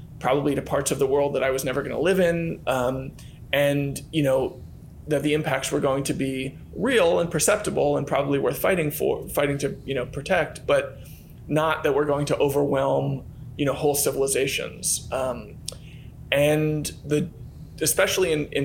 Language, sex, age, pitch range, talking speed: English, male, 20-39, 130-150 Hz, 175 wpm